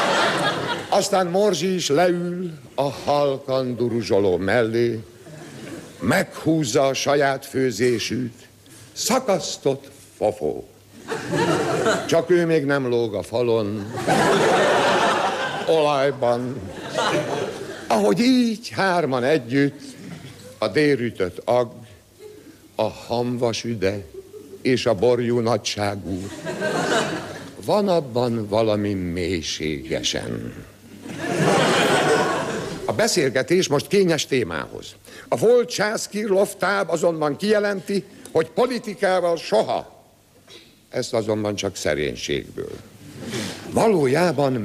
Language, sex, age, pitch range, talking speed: Hungarian, male, 60-79, 120-190 Hz, 75 wpm